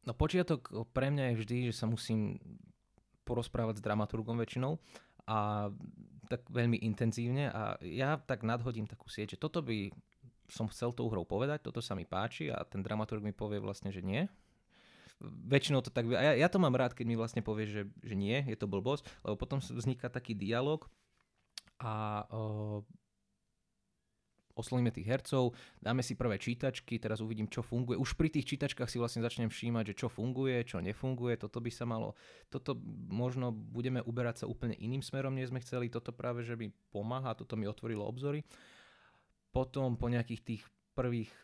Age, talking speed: 20-39, 180 wpm